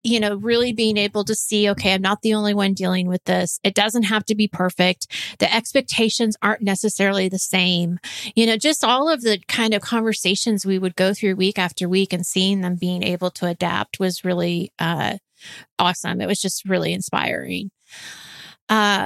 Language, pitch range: English, 195-250 Hz